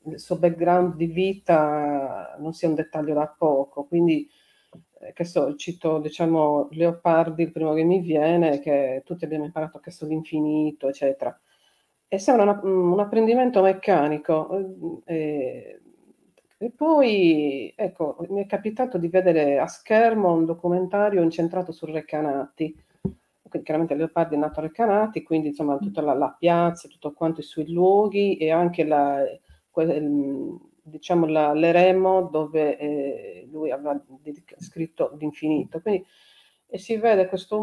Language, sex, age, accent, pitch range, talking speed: Italian, female, 40-59, native, 155-190 Hz, 135 wpm